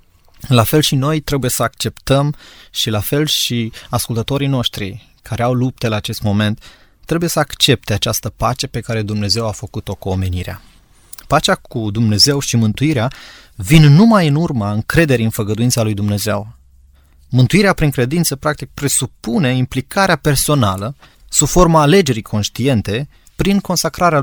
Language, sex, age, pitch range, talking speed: Romanian, male, 20-39, 110-150 Hz, 145 wpm